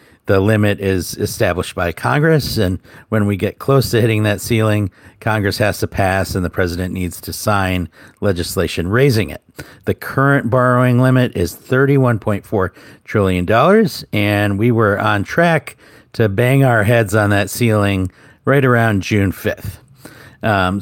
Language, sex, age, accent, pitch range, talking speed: English, male, 50-69, American, 95-120 Hz, 150 wpm